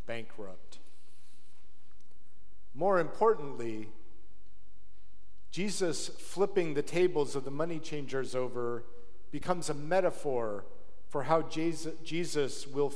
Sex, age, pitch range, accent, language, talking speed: male, 50-69, 110-150 Hz, American, English, 90 wpm